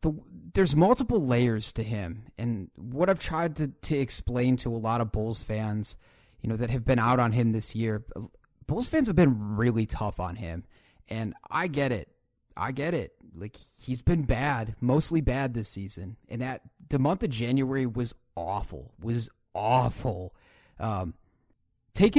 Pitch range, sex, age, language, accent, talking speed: 115-155 Hz, male, 30-49, English, American, 175 wpm